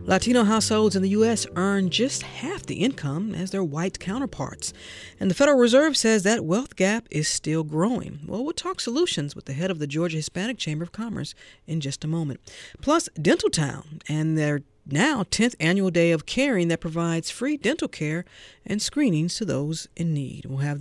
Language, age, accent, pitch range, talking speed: English, 50-69, American, 155-225 Hz, 195 wpm